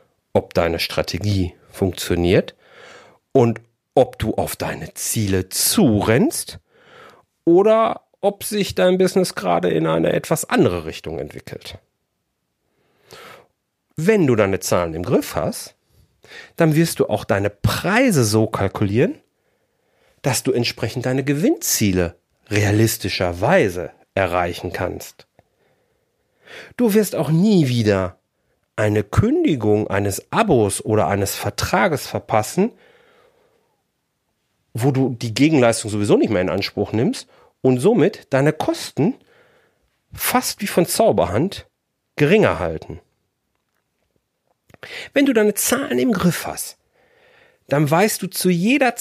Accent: German